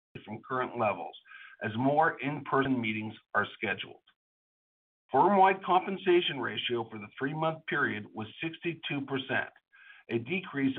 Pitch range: 120-160 Hz